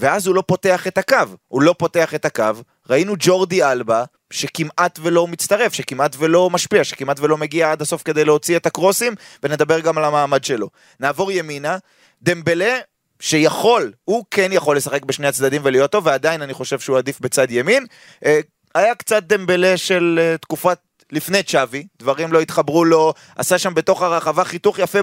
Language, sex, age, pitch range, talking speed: Hebrew, male, 20-39, 150-180 Hz, 165 wpm